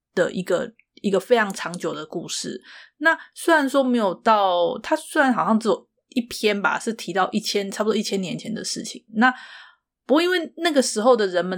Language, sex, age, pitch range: Chinese, female, 30-49, 190-245 Hz